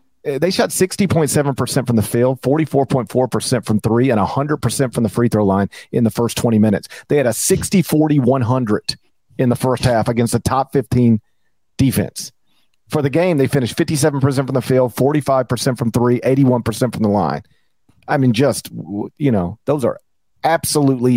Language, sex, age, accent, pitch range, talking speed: English, male, 40-59, American, 105-135 Hz, 160 wpm